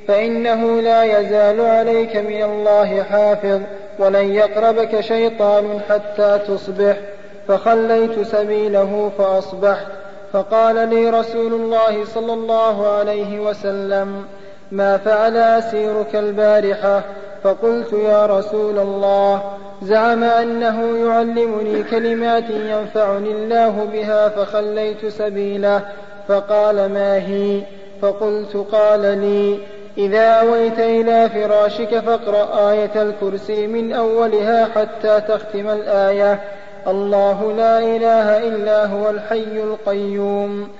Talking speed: 95 wpm